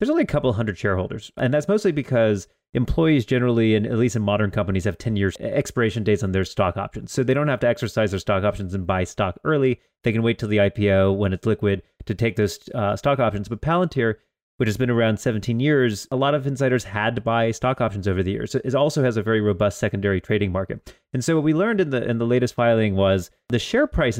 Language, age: English, 30-49